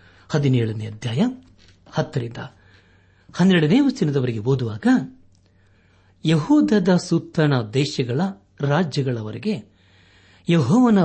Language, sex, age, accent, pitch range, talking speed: Kannada, male, 60-79, native, 115-165 Hz, 60 wpm